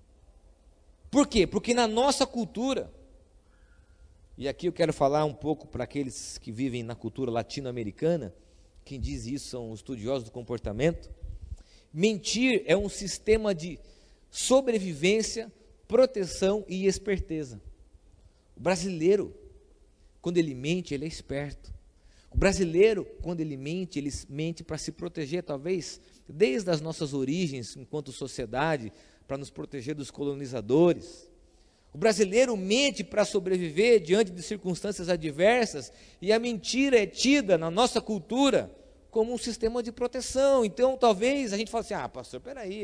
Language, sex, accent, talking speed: Portuguese, male, Brazilian, 135 wpm